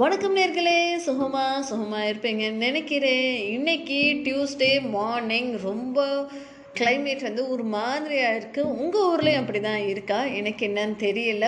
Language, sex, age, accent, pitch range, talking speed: Tamil, female, 20-39, native, 225-300 Hz, 115 wpm